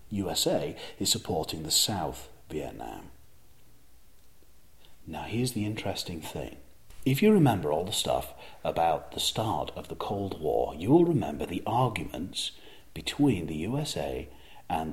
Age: 40-59